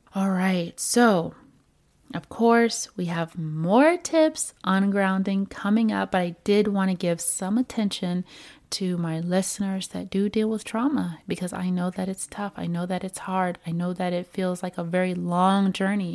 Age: 30-49